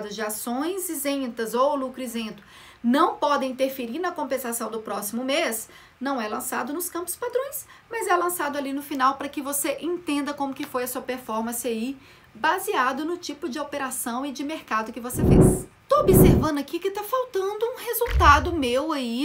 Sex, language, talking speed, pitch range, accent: female, Portuguese, 180 wpm, 245-335 Hz, Brazilian